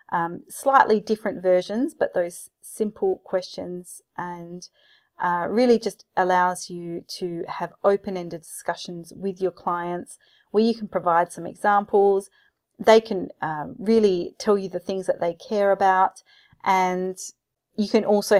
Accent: Australian